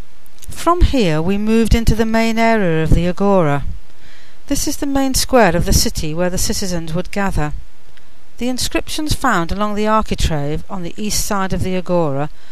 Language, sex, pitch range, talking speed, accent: English, female, 165-225 Hz, 175 wpm, British